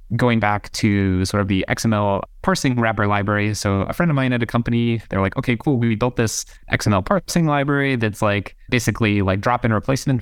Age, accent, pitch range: 20-39, American, 105-130 Hz